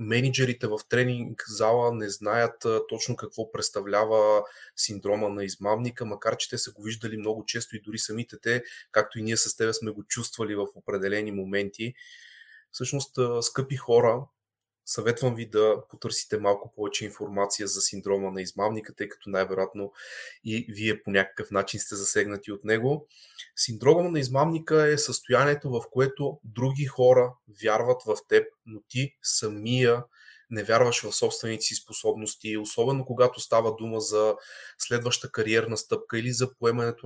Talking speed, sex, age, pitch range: 150 wpm, male, 20-39, 110-135 Hz